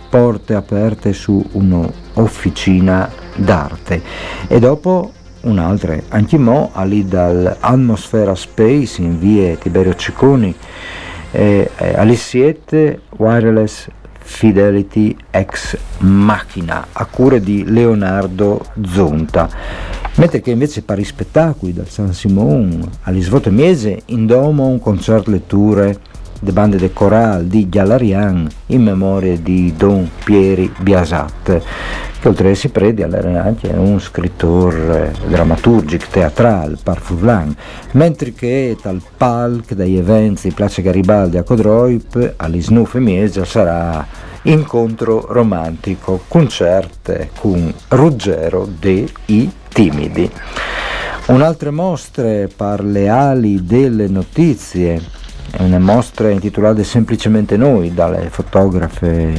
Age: 50-69